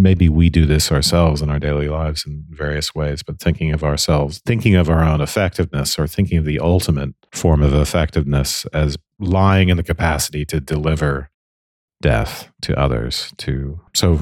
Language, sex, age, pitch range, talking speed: English, male, 40-59, 75-85 Hz, 175 wpm